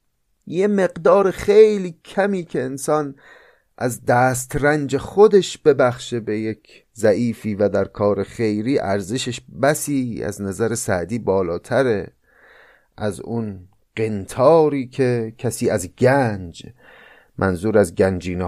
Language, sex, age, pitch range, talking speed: Persian, male, 30-49, 100-135 Hz, 105 wpm